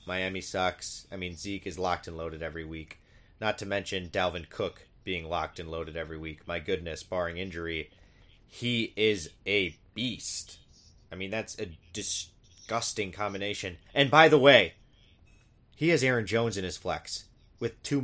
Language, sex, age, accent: English, male, 30-49, American